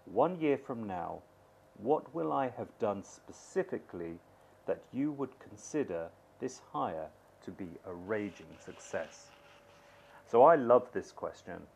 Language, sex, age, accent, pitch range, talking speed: English, male, 40-59, British, 95-130 Hz, 135 wpm